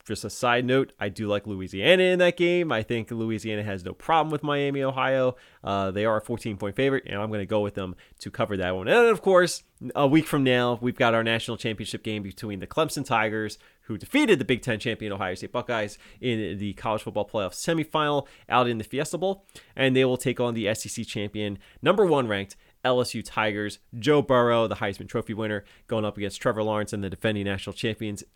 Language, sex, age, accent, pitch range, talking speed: English, male, 20-39, American, 105-140 Hz, 220 wpm